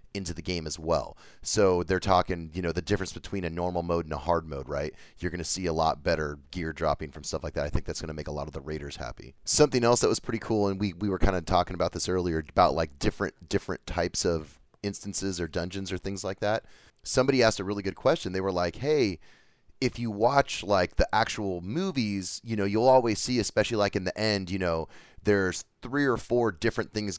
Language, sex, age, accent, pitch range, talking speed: English, male, 30-49, American, 85-105 Hz, 245 wpm